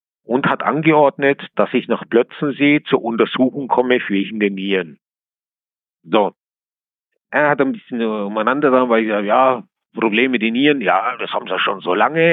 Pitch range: 125-170 Hz